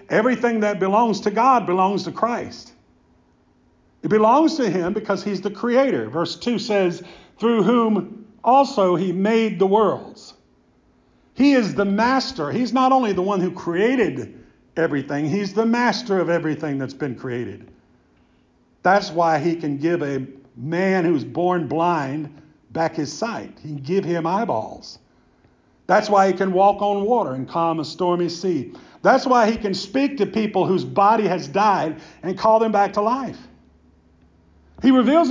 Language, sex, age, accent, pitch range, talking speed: English, male, 50-69, American, 160-215 Hz, 160 wpm